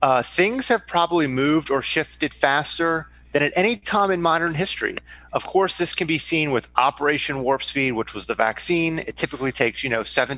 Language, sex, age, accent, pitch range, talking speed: English, male, 30-49, American, 130-165 Hz, 200 wpm